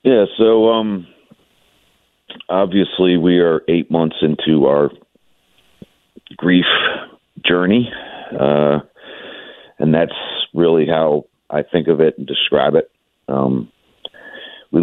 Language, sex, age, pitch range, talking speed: English, male, 50-69, 70-80 Hz, 105 wpm